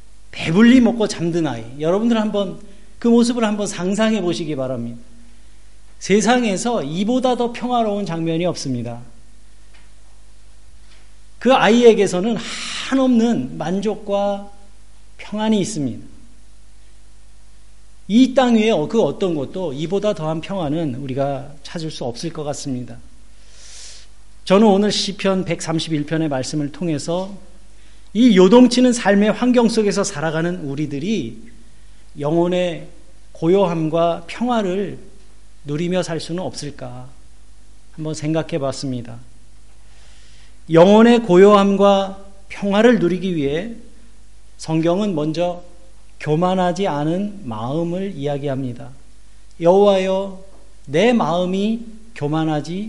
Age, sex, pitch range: 40-59, male, 145-205 Hz